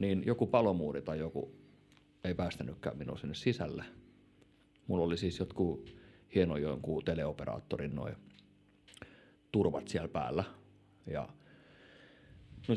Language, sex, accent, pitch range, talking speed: Finnish, male, native, 90-105 Hz, 105 wpm